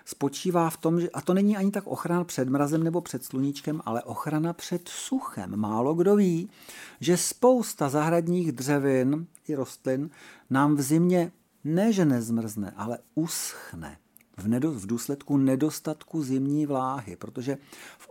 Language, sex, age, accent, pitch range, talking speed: Czech, male, 50-69, native, 130-175 Hz, 145 wpm